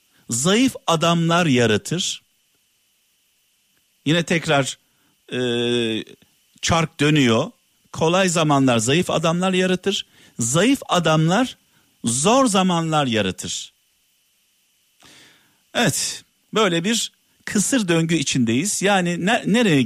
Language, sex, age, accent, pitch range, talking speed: Turkish, male, 50-69, native, 140-195 Hz, 80 wpm